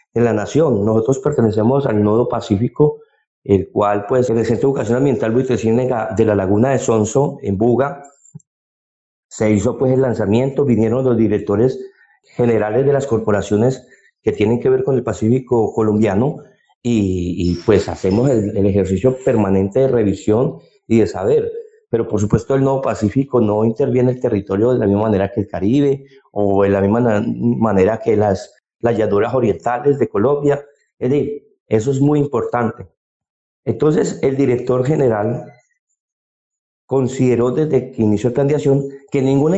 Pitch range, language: 110-140 Hz, Spanish